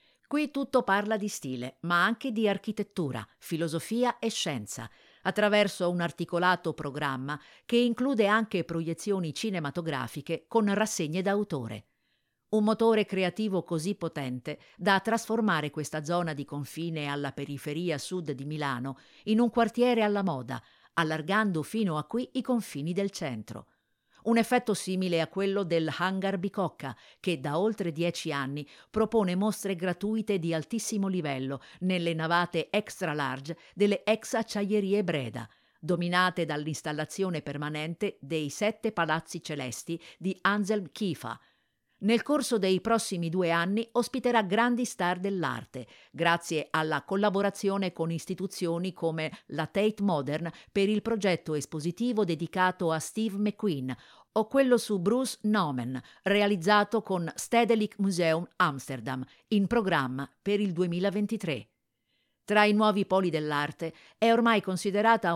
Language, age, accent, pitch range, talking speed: Italian, 50-69, native, 155-210 Hz, 130 wpm